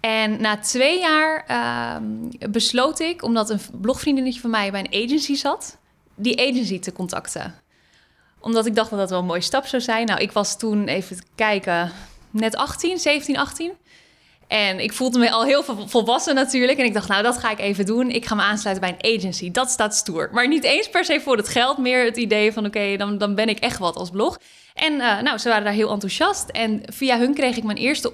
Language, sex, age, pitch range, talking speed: Dutch, female, 10-29, 210-260 Hz, 220 wpm